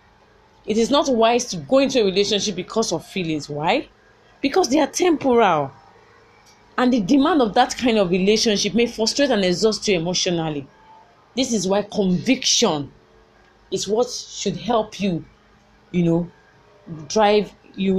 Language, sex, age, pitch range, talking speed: English, female, 30-49, 175-235 Hz, 145 wpm